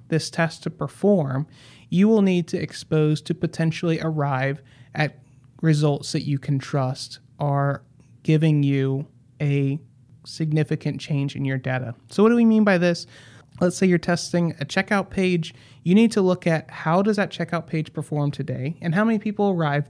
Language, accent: English, American